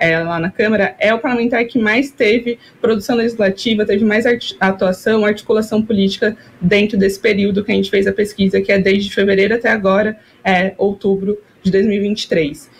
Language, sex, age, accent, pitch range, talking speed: Portuguese, female, 20-39, Brazilian, 200-240 Hz, 160 wpm